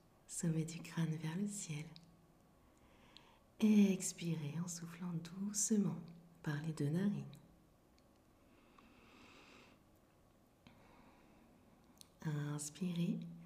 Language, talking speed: French, 70 wpm